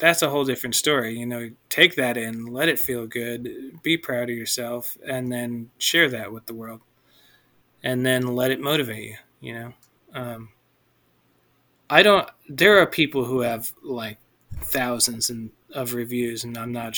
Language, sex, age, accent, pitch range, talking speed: English, male, 30-49, American, 115-135 Hz, 170 wpm